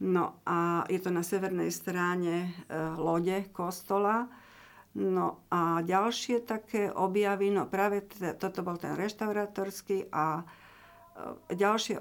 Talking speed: 125 wpm